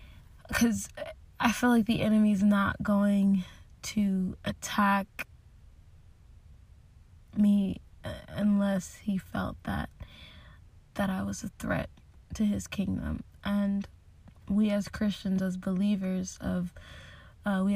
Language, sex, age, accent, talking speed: English, female, 20-39, American, 110 wpm